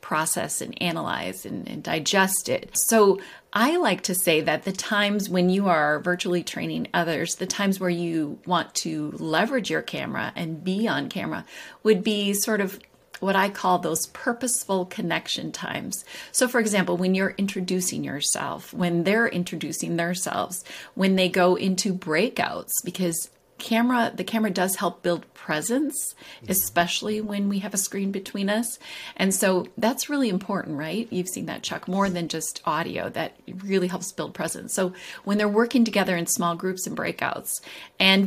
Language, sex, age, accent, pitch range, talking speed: English, female, 30-49, American, 180-220 Hz, 170 wpm